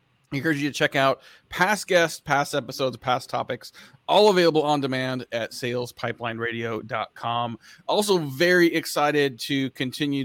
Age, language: 30-49, English